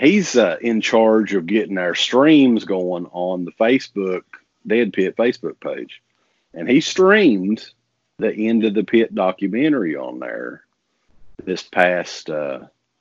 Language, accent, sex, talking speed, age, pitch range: English, American, male, 135 wpm, 40-59, 85-110 Hz